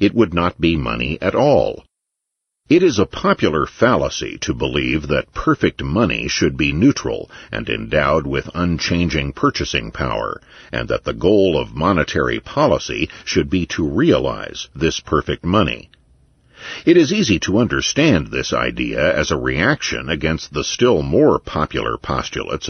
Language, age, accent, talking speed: English, 60-79, American, 150 wpm